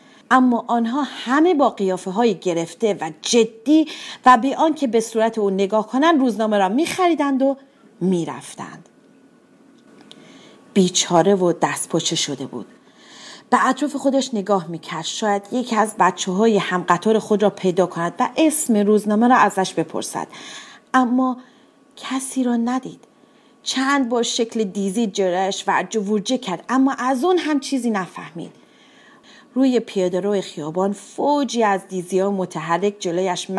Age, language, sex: 40-59, Persian, female